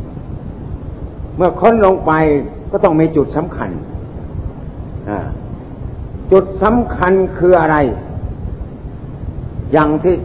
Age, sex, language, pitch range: 60-79, male, Thai, 140-175 Hz